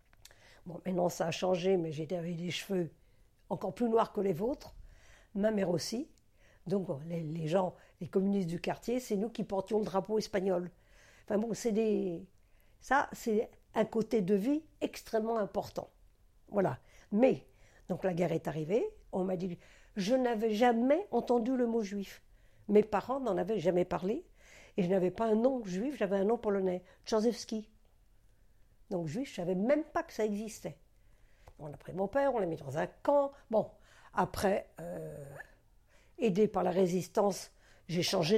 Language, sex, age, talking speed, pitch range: French, female, 60-79, 170 wpm, 170-220 Hz